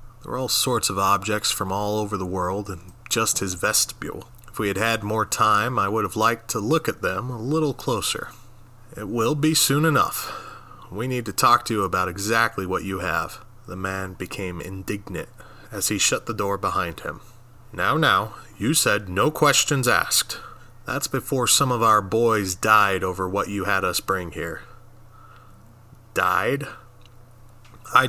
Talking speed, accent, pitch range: 175 wpm, American, 95-120 Hz